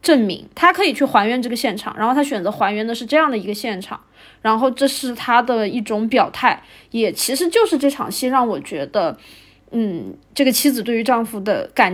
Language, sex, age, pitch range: Chinese, female, 20-39, 230-290 Hz